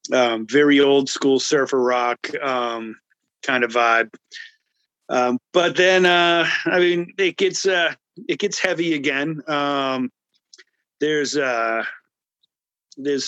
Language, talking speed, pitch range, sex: English, 120 wpm, 130-175 Hz, male